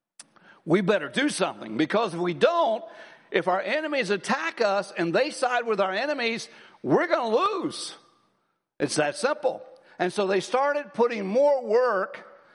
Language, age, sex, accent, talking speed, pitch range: English, 60-79, male, American, 160 wpm, 175-255 Hz